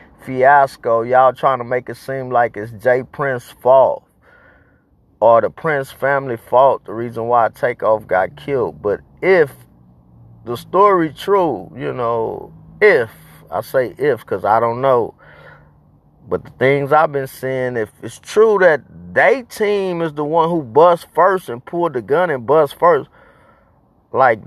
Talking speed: 155 wpm